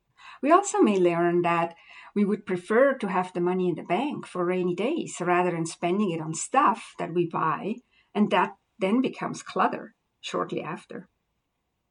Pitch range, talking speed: 180-235 Hz, 170 wpm